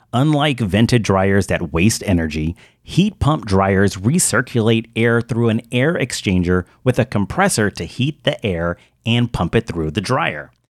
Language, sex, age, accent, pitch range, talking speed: English, male, 40-59, American, 95-125 Hz, 155 wpm